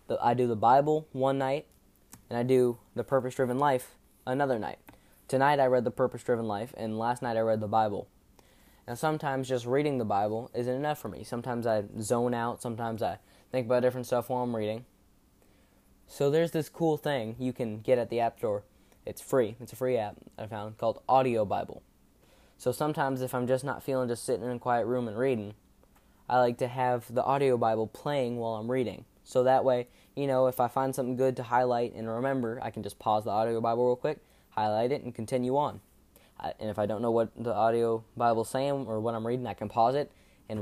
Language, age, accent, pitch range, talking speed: English, 10-29, American, 110-130 Hz, 220 wpm